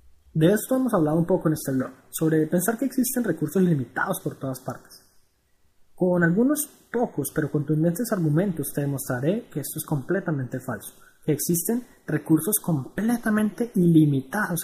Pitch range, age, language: 135-190 Hz, 20-39, Spanish